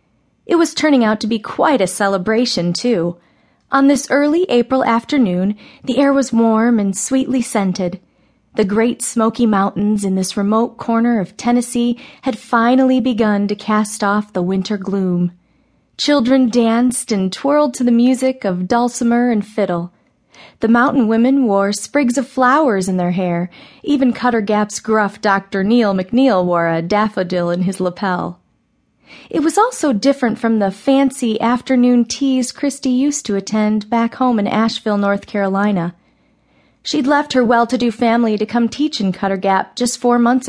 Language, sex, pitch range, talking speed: English, female, 200-260 Hz, 160 wpm